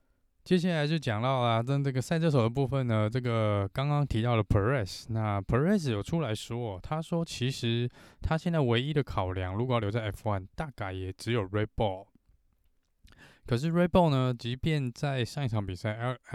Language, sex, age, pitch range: Chinese, male, 20-39, 105-135 Hz